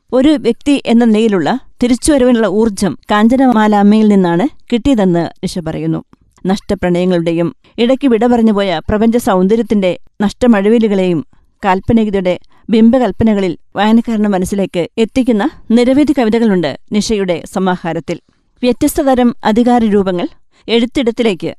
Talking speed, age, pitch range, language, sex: 85 wpm, 20-39, 190-240 Hz, Malayalam, female